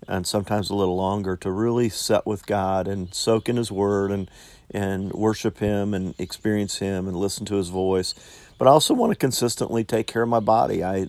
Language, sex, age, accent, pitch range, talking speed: English, male, 50-69, American, 90-105 Hz, 210 wpm